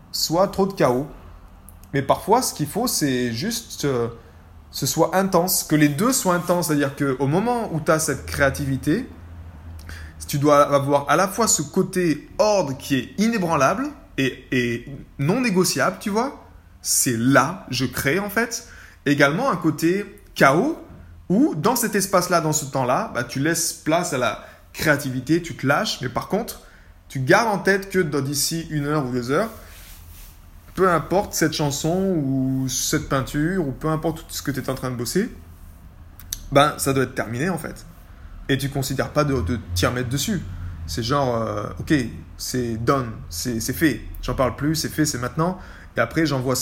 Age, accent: 20-39, French